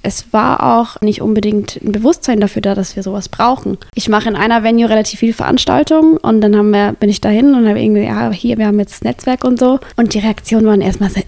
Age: 20-39